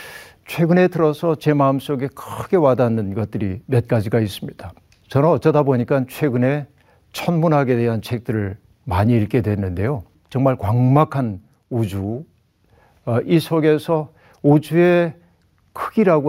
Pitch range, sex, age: 115-155 Hz, male, 60-79